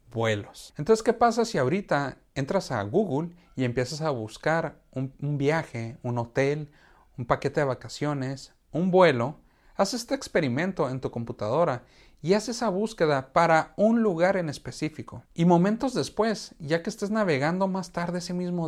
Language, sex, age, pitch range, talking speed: Spanish, male, 40-59, 115-155 Hz, 155 wpm